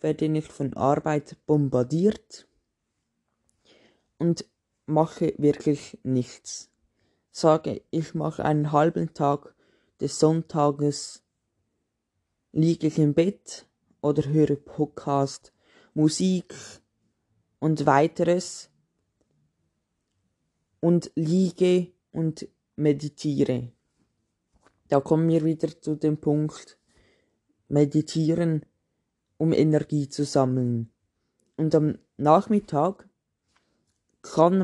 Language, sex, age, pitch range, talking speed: German, female, 20-39, 145-165 Hz, 80 wpm